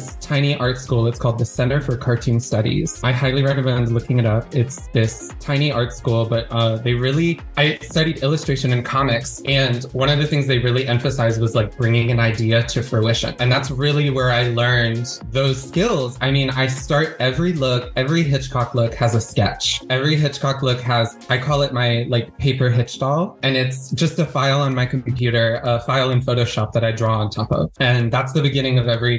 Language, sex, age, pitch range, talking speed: English, male, 20-39, 120-140 Hz, 210 wpm